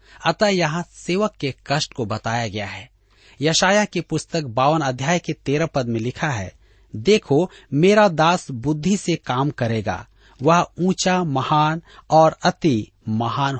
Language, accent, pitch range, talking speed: Hindi, native, 115-175 Hz, 145 wpm